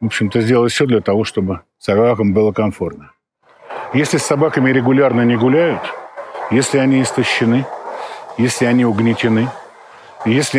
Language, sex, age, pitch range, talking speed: Russian, male, 50-69, 95-125 Hz, 130 wpm